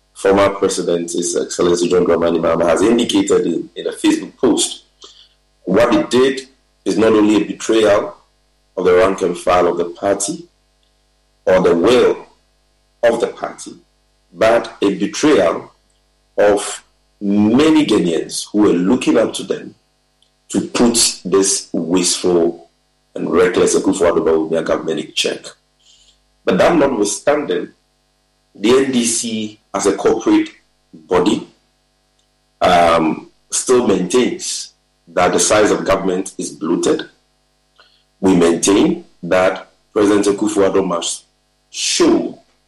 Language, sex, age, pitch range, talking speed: English, male, 50-69, 90-120 Hz, 120 wpm